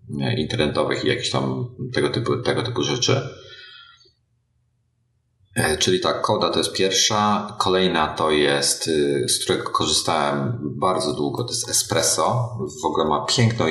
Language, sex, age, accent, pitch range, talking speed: Polish, male, 40-59, native, 75-105 Hz, 130 wpm